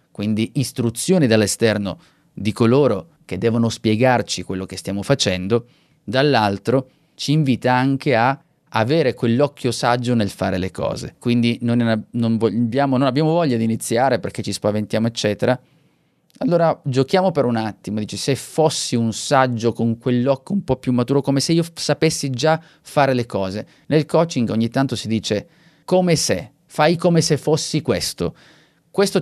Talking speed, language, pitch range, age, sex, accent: 150 wpm, Italian, 115-150 Hz, 30-49, male, native